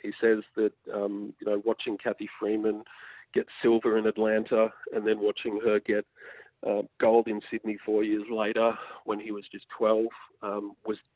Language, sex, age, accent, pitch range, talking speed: English, male, 40-59, Australian, 105-120 Hz, 170 wpm